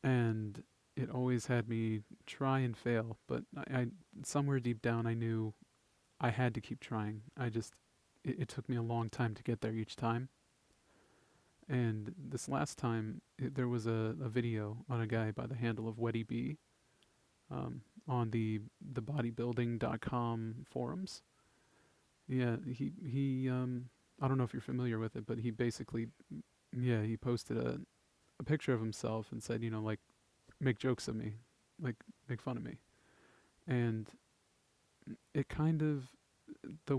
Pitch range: 115-130 Hz